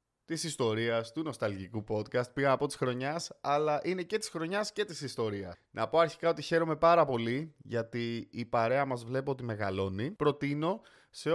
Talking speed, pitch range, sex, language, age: 175 wpm, 115-165 Hz, male, Greek, 20-39